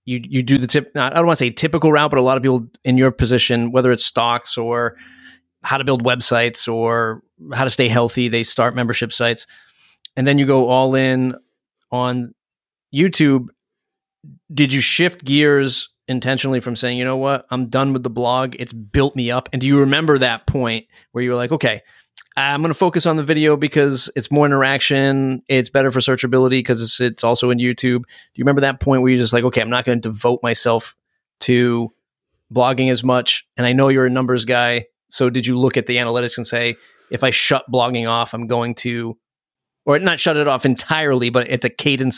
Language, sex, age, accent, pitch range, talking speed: English, male, 30-49, American, 120-135 Hz, 215 wpm